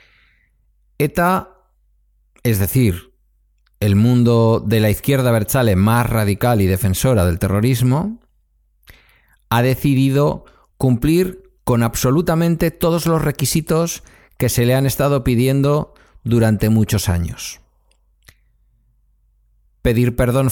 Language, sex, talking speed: Spanish, male, 100 wpm